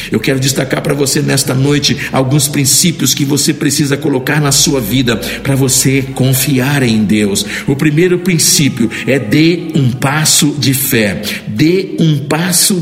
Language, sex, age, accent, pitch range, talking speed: Portuguese, male, 60-79, Brazilian, 135-160 Hz, 155 wpm